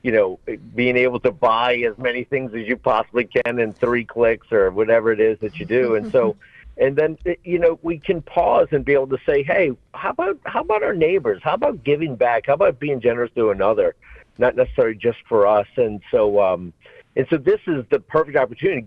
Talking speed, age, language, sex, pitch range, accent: 220 wpm, 50-69, English, male, 120-190 Hz, American